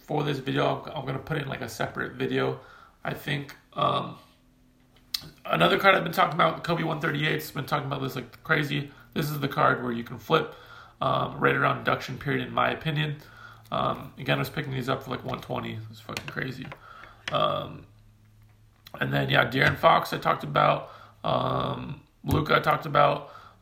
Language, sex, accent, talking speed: English, male, American, 180 wpm